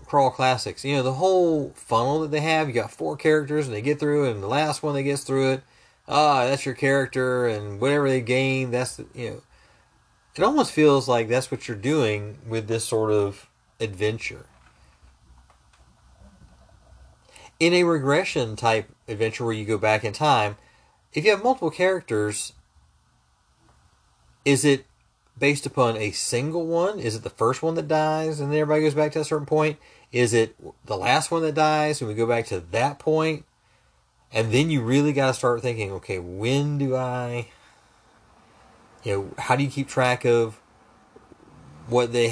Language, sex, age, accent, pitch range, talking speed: English, male, 30-49, American, 110-145 Hz, 180 wpm